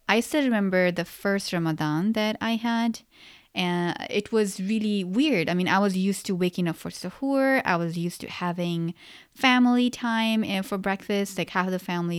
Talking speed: 180 wpm